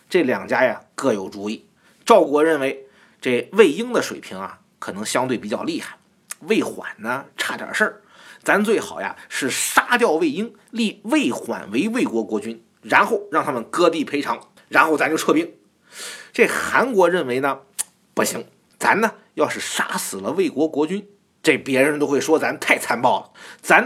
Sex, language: male, Chinese